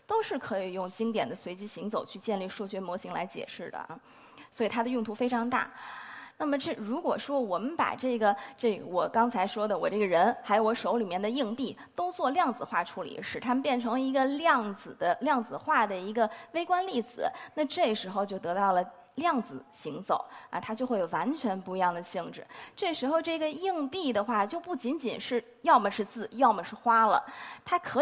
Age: 20-39